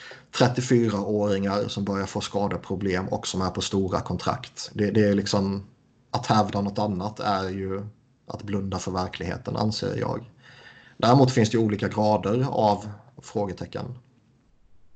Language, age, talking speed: Swedish, 30-49, 135 wpm